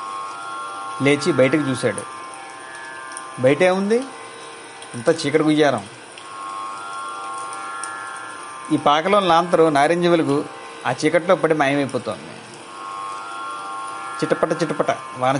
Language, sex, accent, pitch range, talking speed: Telugu, male, native, 100-150 Hz, 75 wpm